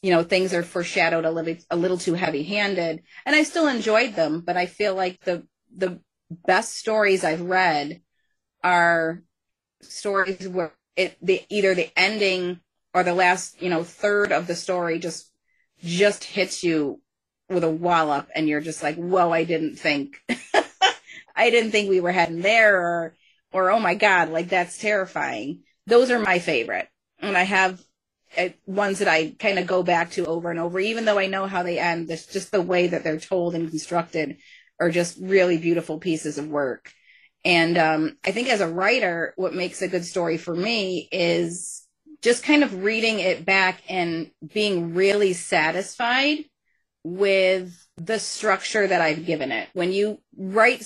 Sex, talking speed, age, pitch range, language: female, 175 wpm, 30-49, 170-195 Hz, English